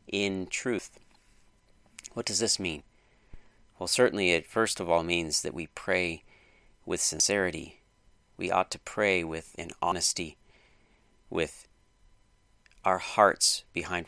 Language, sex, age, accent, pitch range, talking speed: English, male, 40-59, American, 80-100 Hz, 125 wpm